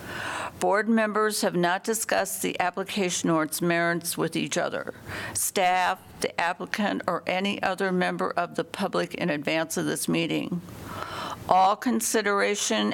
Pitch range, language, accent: 170-195 Hz, English, American